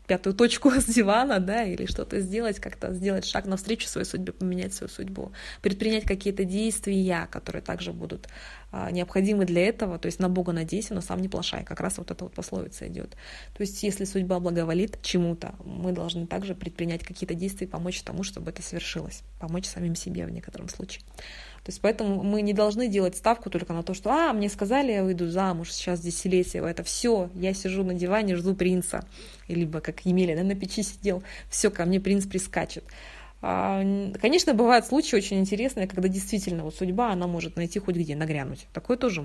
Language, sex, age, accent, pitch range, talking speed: Russian, female, 20-39, native, 170-205 Hz, 185 wpm